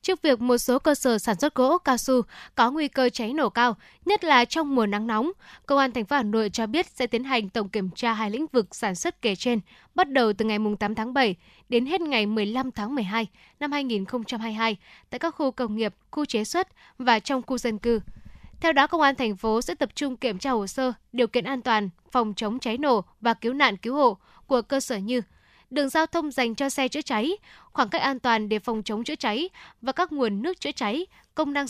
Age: 10-29